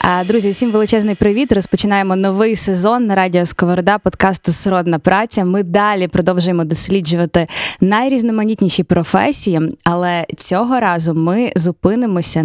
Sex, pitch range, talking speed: female, 175-210 Hz, 115 wpm